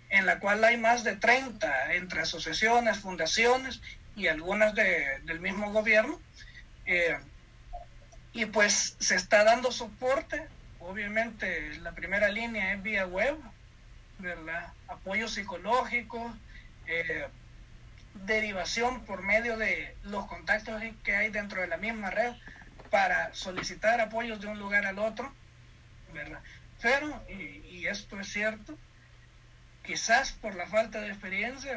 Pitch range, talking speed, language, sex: 185-235 Hz, 130 wpm, Spanish, male